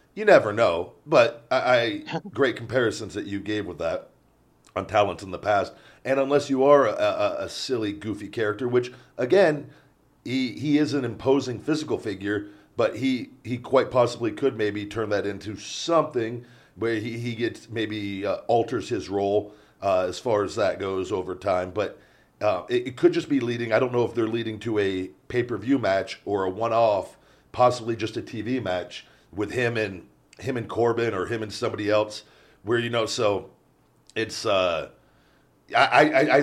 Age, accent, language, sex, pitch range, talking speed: 40-59, American, English, male, 100-125 Hz, 185 wpm